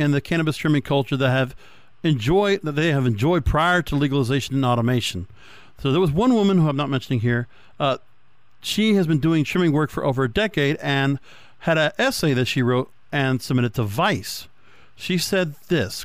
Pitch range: 130-180 Hz